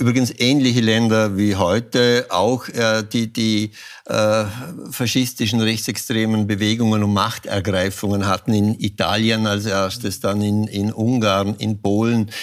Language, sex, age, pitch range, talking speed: German, male, 60-79, 100-115 Hz, 125 wpm